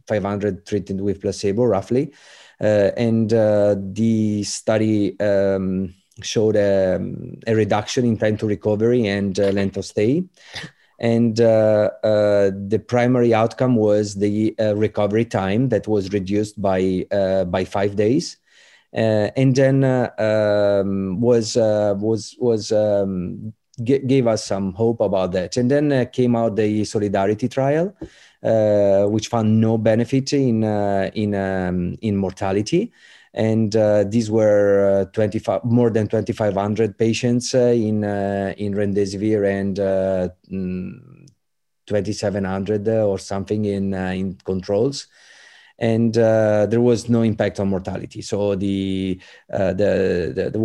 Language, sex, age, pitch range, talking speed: English, male, 30-49, 100-115 Hz, 140 wpm